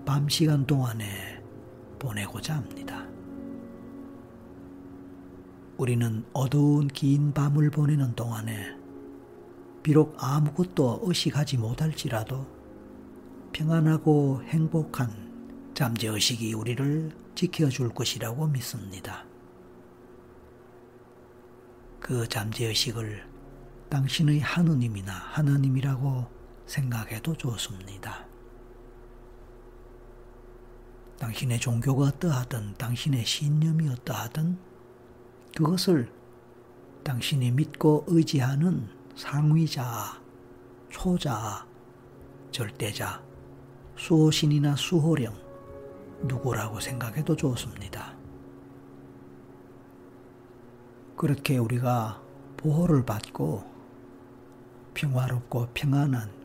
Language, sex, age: Korean, male, 50-69